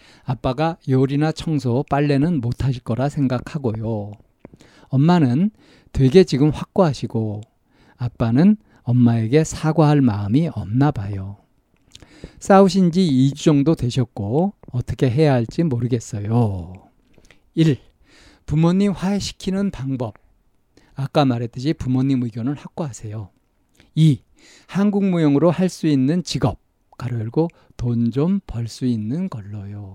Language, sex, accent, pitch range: Korean, male, native, 115-160 Hz